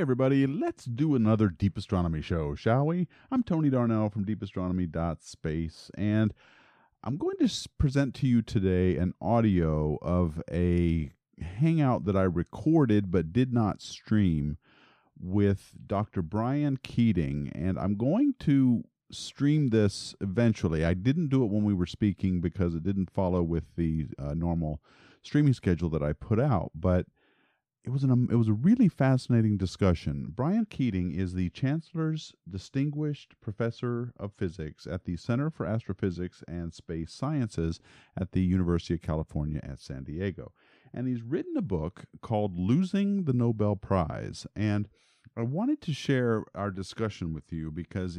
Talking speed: 155 wpm